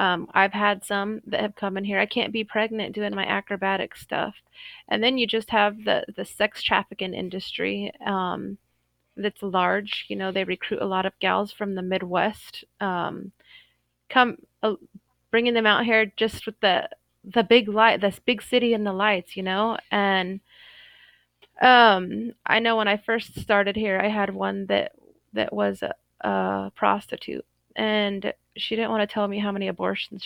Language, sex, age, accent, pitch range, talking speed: English, female, 30-49, American, 185-220 Hz, 180 wpm